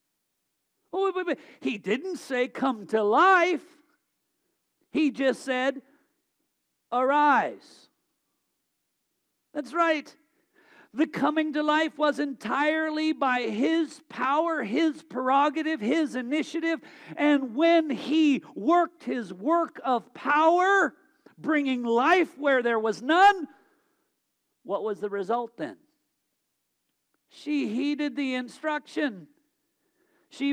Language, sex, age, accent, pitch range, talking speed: English, male, 50-69, American, 225-315 Hz, 95 wpm